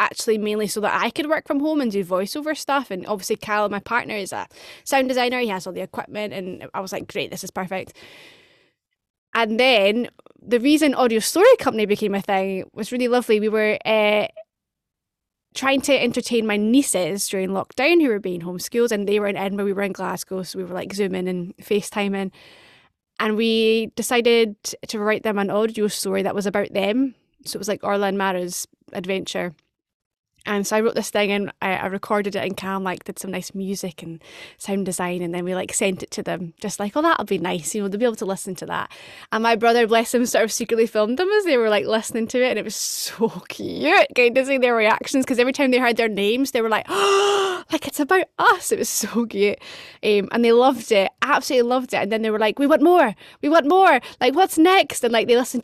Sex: female